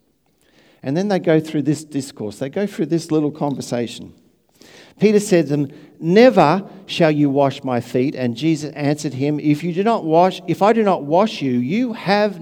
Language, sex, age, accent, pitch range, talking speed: English, male, 50-69, Australian, 110-170 Hz, 195 wpm